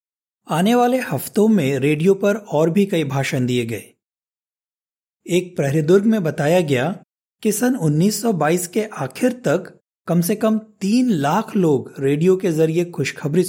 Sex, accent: male, native